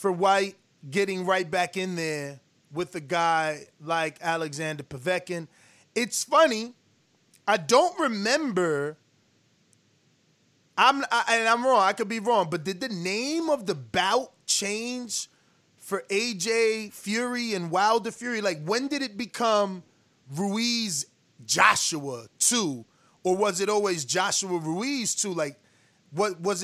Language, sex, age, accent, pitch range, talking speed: English, male, 20-39, American, 170-230 Hz, 135 wpm